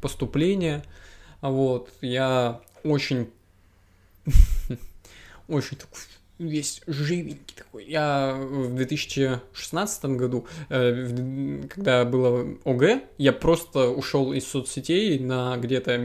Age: 20-39